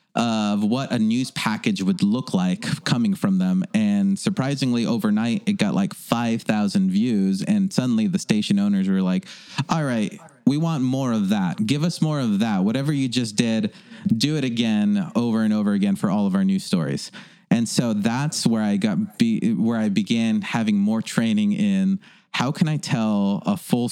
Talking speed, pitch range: 190 wpm, 175-210 Hz